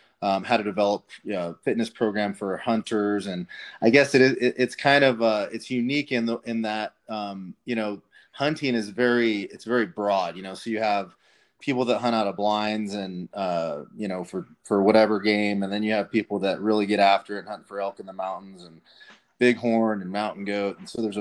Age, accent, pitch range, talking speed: 30-49, American, 100-115 Hz, 215 wpm